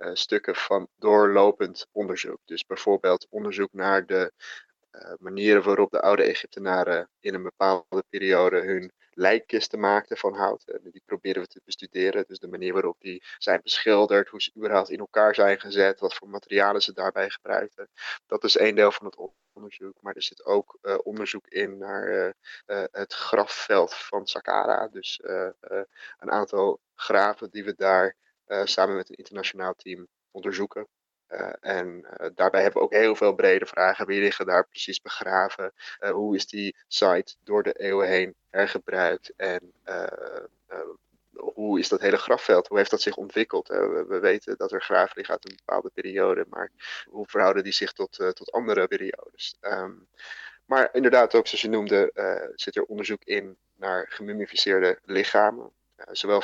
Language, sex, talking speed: Dutch, male, 175 wpm